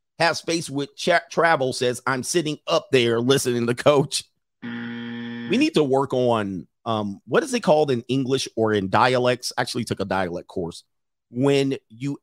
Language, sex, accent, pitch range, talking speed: English, male, American, 110-145 Hz, 170 wpm